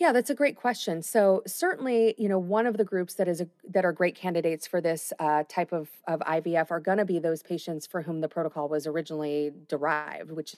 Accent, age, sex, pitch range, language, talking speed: American, 30-49, female, 155-190 Hz, English, 235 wpm